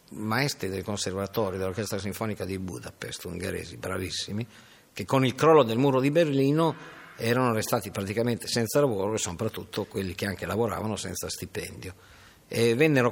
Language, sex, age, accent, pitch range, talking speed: Italian, male, 50-69, native, 100-130 Hz, 145 wpm